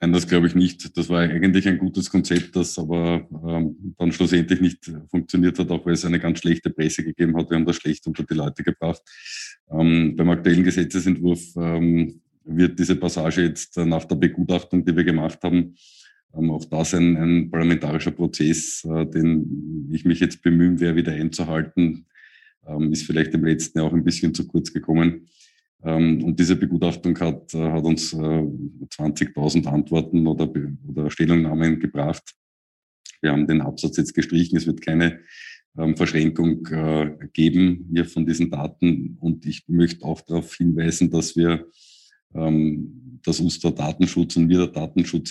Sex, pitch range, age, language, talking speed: male, 80-85 Hz, 20-39, German, 165 wpm